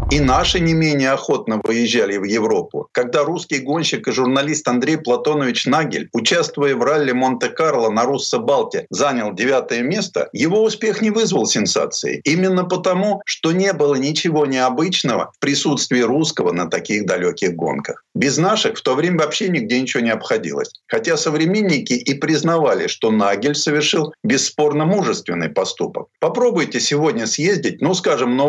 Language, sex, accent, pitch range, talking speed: Russian, male, native, 135-185 Hz, 145 wpm